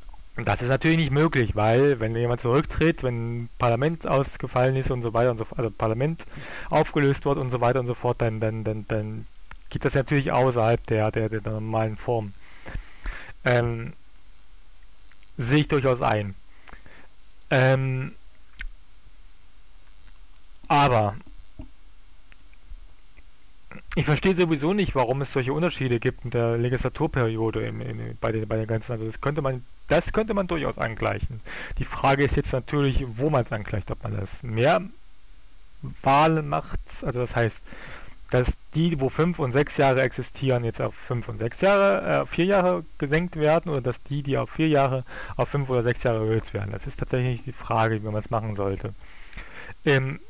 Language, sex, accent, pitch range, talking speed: German, male, German, 110-140 Hz, 170 wpm